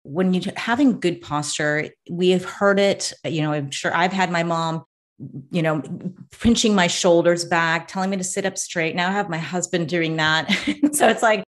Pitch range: 175-215 Hz